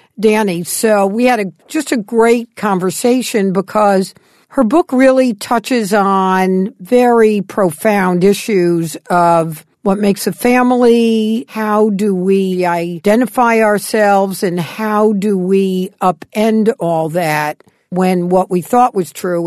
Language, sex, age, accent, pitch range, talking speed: English, female, 60-79, American, 170-220 Hz, 125 wpm